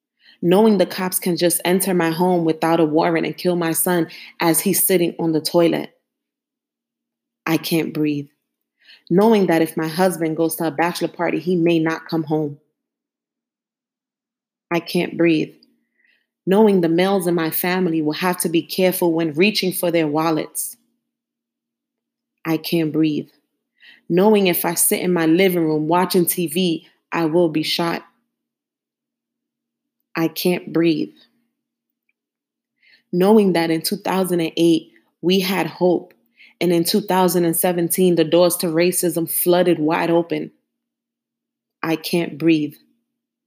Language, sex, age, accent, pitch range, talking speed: English, female, 30-49, American, 165-250 Hz, 135 wpm